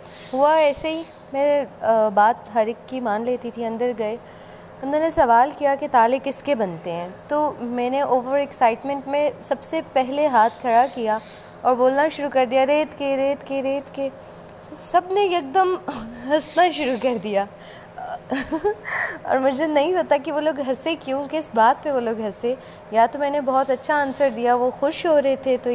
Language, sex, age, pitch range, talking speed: Urdu, female, 20-39, 230-285 Hz, 195 wpm